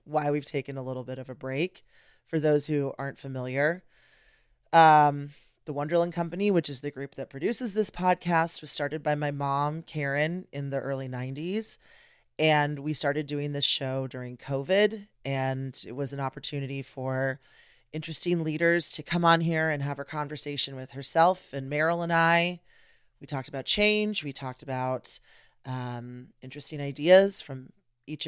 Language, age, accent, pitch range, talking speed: English, 30-49, American, 135-165 Hz, 165 wpm